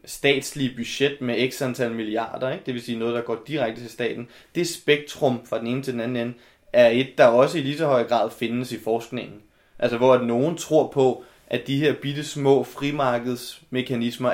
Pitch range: 115-130 Hz